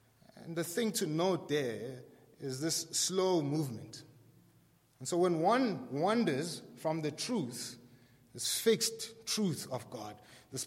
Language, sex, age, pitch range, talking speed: English, male, 30-49, 125-160 Hz, 135 wpm